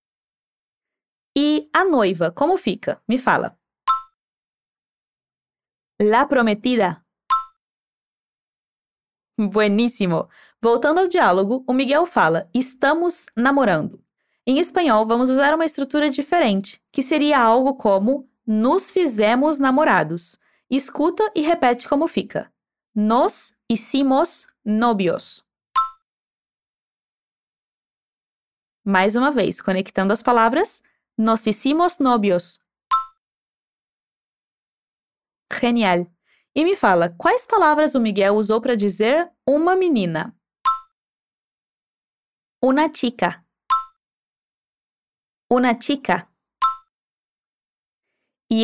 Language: Portuguese